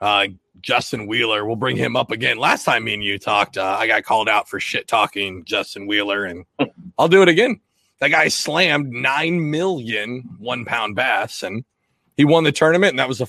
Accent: American